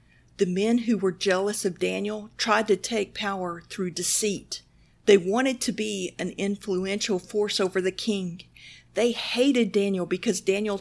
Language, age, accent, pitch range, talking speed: English, 50-69, American, 185-210 Hz, 155 wpm